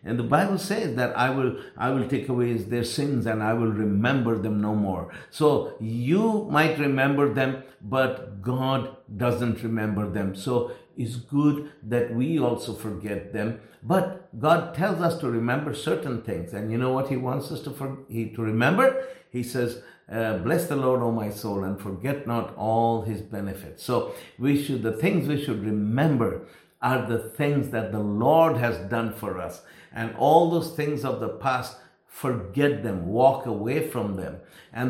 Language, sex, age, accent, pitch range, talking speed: English, male, 60-79, Indian, 115-135 Hz, 180 wpm